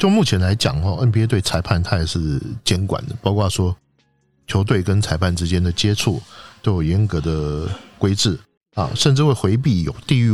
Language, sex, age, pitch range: Chinese, male, 50-69, 90-120 Hz